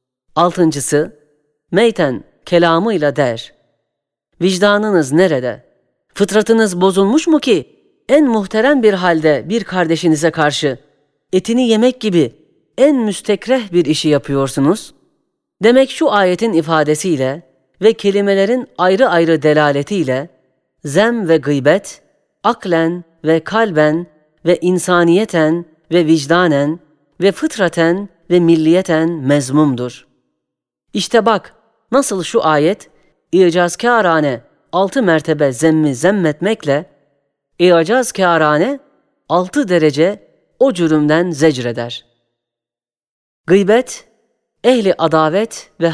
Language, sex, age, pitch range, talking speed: Turkish, female, 40-59, 145-200 Hz, 95 wpm